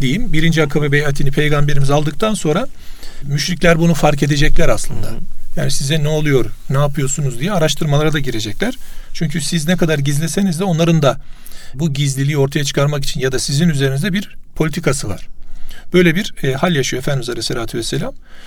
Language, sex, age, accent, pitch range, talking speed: Turkish, male, 40-59, native, 135-175 Hz, 160 wpm